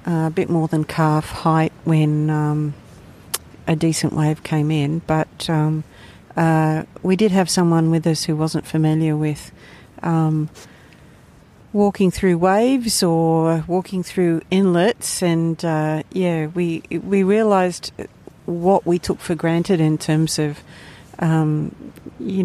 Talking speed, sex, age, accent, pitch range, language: 135 wpm, female, 50-69, Australian, 155-180 Hz, English